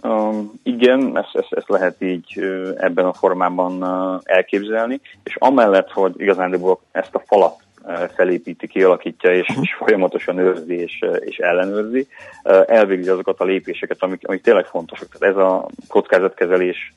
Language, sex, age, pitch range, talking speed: Hungarian, male, 30-49, 90-105 Hz, 140 wpm